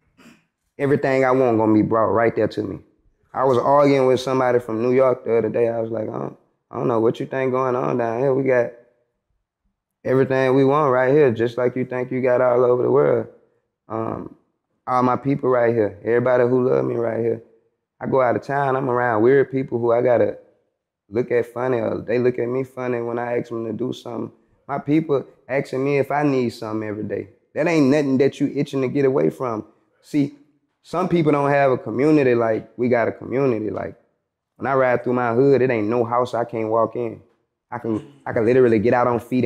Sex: male